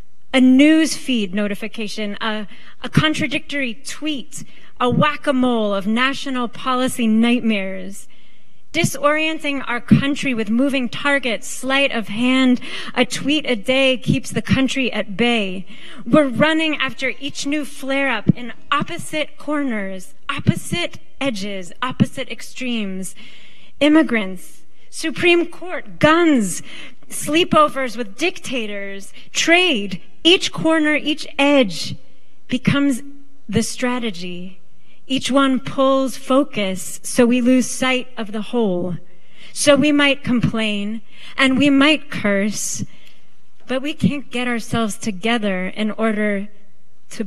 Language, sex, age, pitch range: English, female, 30-49, 205-275 Hz